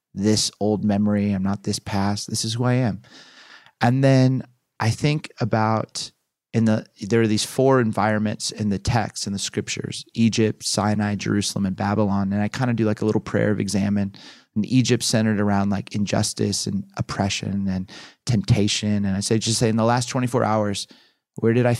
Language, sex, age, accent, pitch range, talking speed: English, male, 30-49, American, 100-115 Hz, 190 wpm